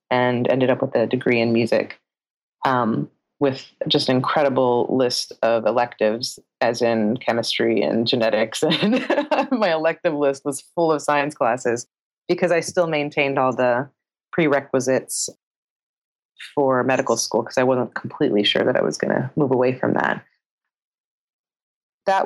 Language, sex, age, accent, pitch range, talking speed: English, female, 30-49, American, 125-150 Hz, 150 wpm